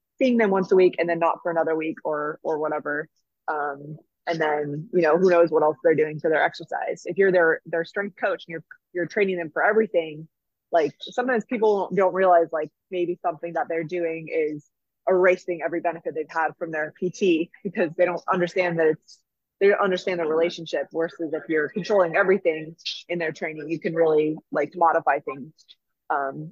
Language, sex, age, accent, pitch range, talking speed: English, female, 20-39, American, 160-190 Hz, 195 wpm